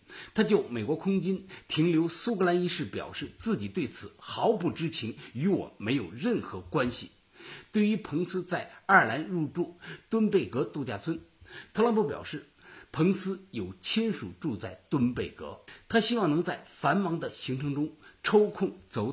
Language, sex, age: Chinese, male, 50-69